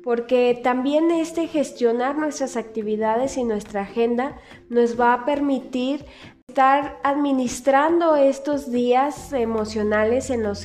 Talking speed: 115 wpm